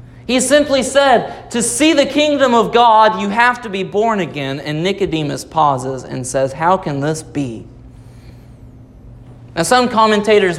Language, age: English, 30-49